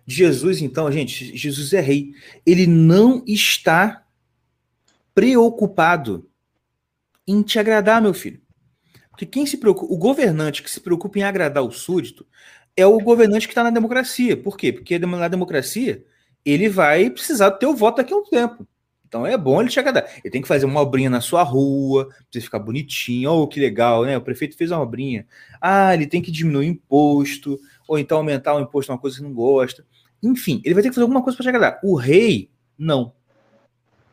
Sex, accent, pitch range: male, Brazilian, 135-200 Hz